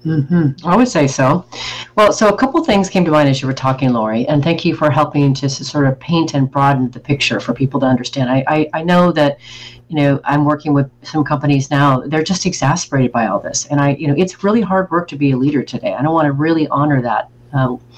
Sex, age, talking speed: female, 40-59, 255 wpm